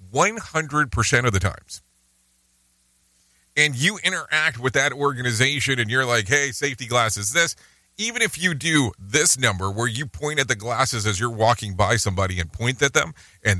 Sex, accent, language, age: male, American, English, 40-59